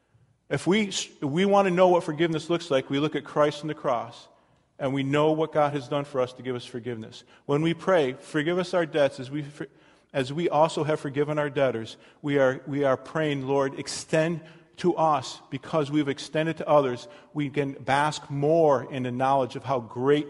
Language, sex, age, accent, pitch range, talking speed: English, male, 40-59, American, 130-170 Hz, 215 wpm